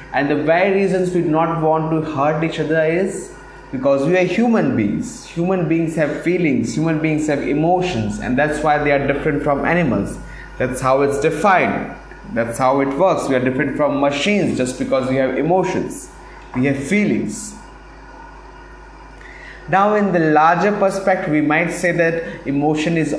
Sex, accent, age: male, Indian, 20-39